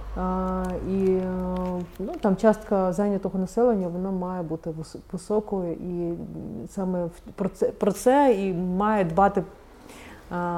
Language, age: Ukrainian, 30-49